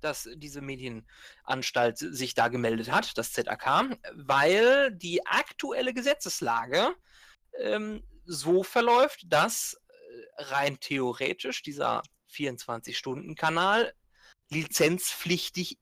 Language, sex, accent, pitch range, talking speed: German, male, German, 145-240 Hz, 85 wpm